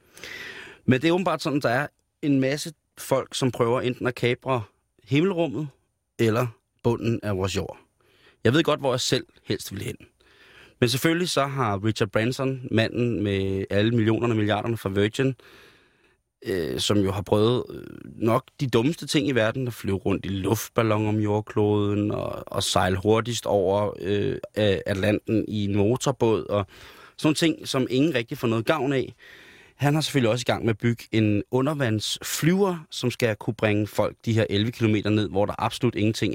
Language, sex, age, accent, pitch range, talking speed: Danish, male, 30-49, native, 100-130 Hz, 175 wpm